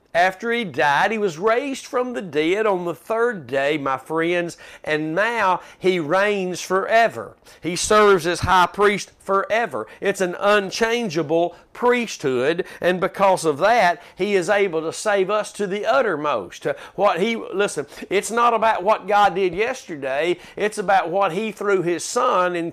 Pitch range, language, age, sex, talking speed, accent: 175-210 Hz, English, 50-69, male, 160 wpm, American